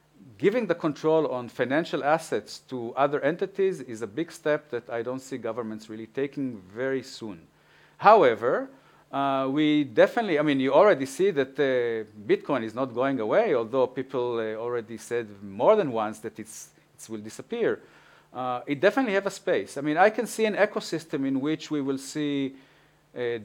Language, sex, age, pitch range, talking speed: Danish, male, 50-69, 120-170 Hz, 180 wpm